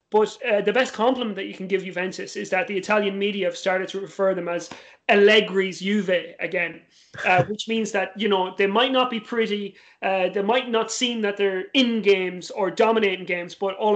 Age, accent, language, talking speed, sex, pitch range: 30-49, British, English, 210 wpm, male, 180-210 Hz